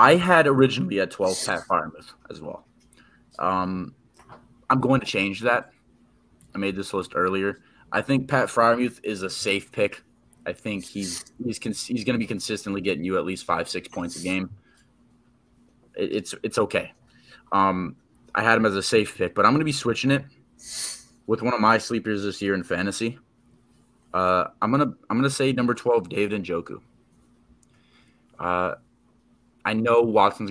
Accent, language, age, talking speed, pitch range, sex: American, English, 20-39, 175 wpm, 95-115 Hz, male